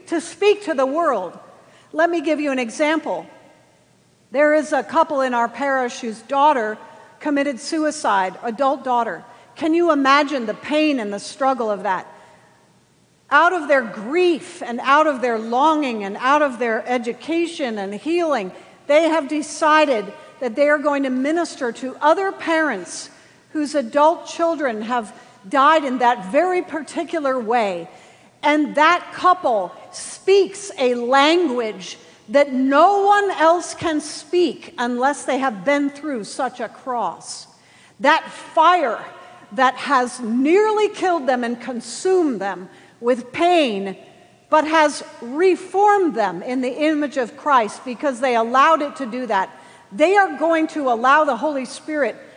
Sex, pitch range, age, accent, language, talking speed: female, 245-320 Hz, 50-69, American, English, 145 wpm